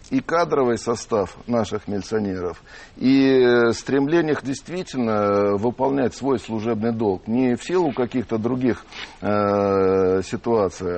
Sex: male